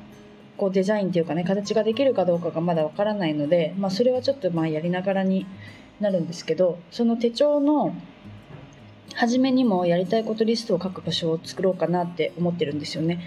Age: 20-39